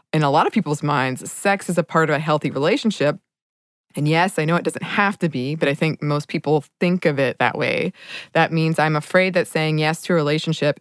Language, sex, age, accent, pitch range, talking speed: English, female, 20-39, American, 140-165 Hz, 240 wpm